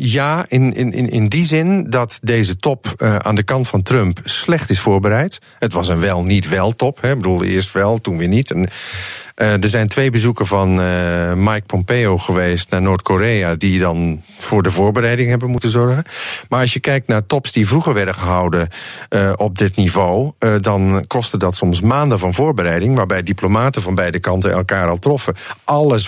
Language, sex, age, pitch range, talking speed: Dutch, male, 40-59, 95-125 Hz, 185 wpm